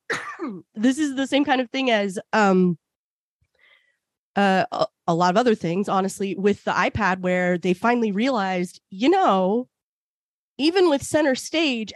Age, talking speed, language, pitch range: 30-49, 145 wpm, English, 190-270 Hz